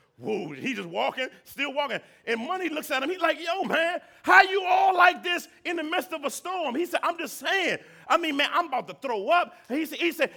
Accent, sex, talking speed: American, male, 250 wpm